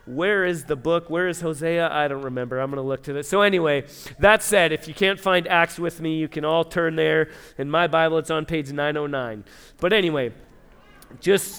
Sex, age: male, 40-59